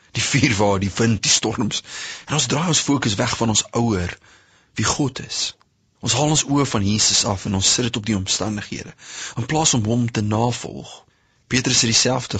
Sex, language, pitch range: male, English, 95-125 Hz